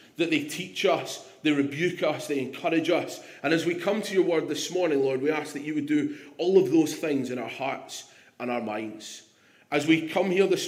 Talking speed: 230 wpm